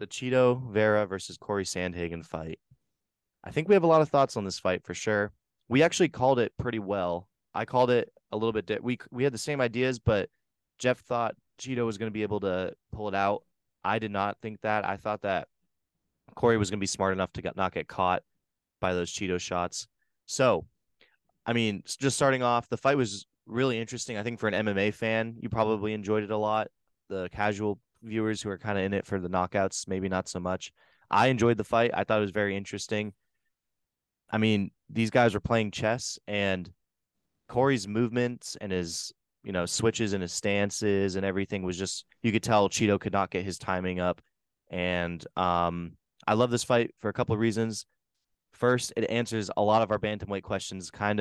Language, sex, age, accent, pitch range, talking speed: English, male, 20-39, American, 95-115 Hz, 205 wpm